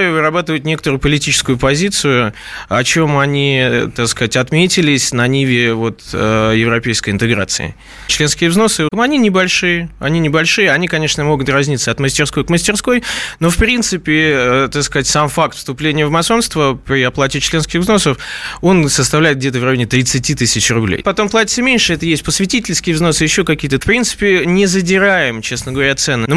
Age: 20-39